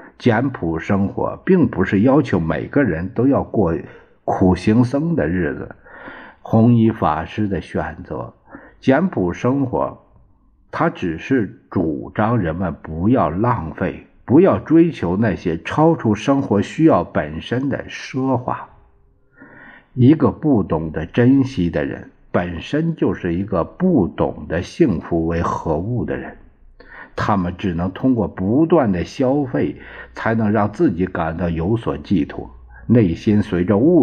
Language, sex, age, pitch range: Chinese, male, 60-79, 85-110 Hz